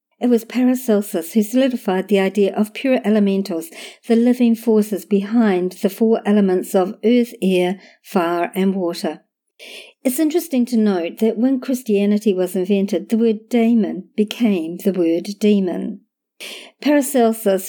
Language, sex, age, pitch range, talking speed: English, male, 50-69, 190-235 Hz, 135 wpm